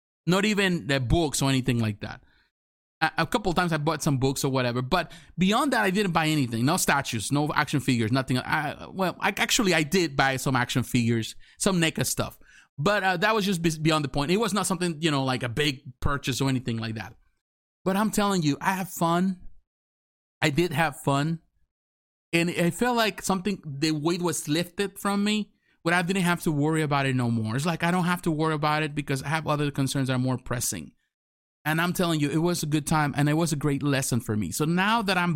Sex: male